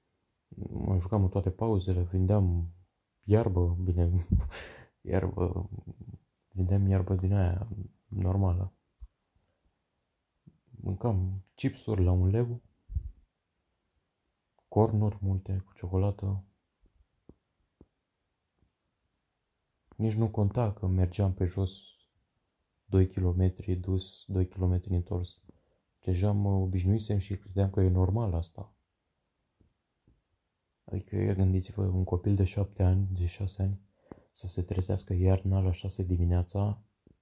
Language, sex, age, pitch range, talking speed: Romanian, male, 20-39, 90-100 Hz, 100 wpm